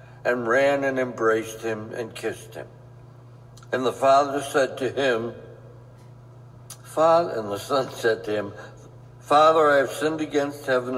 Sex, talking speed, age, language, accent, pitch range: male, 150 wpm, 60-79, English, American, 125-160 Hz